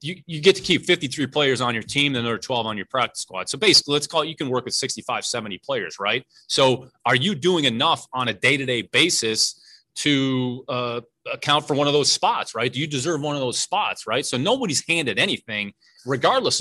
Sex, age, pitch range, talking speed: male, 30-49, 120-145 Hz, 220 wpm